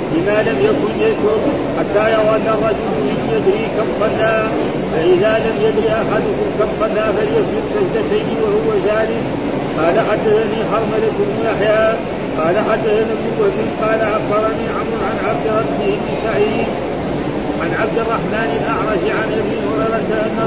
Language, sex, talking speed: Arabic, male, 140 wpm